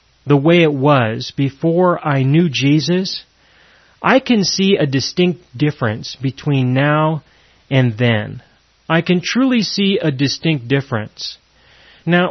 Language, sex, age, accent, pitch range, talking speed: English, male, 30-49, American, 125-165 Hz, 125 wpm